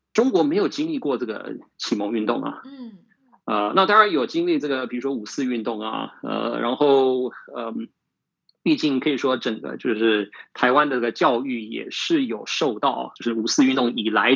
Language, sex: Chinese, male